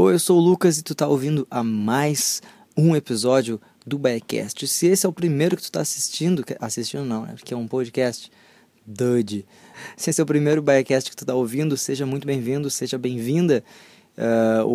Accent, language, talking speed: Brazilian, Portuguese, 195 wpm